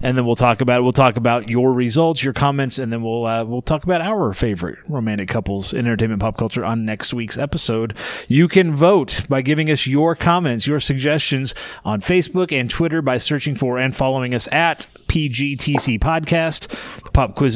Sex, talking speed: male, 200 wpm